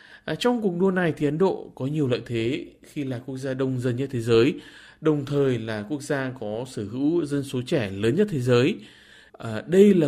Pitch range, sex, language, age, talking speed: 110-150 Hz, male, Vietnamese, 20-39, 230 wpm